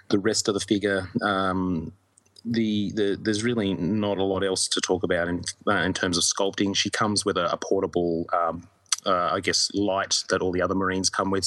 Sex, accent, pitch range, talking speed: male, Australian, 95-115 Hz, 215 wpm